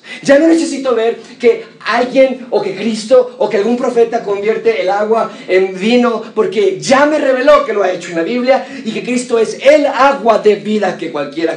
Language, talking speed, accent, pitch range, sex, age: Spanish, 200 wpm, Mexican, 145-230 Hz, male, 40-59